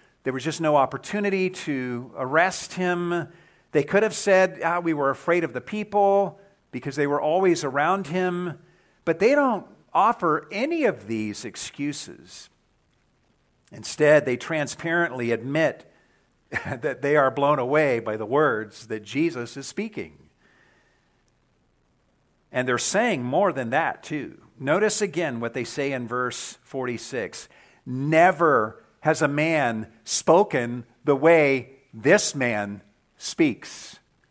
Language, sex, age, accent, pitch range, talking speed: English, male, 50-69, American, 130-195 Hz, 130 wpm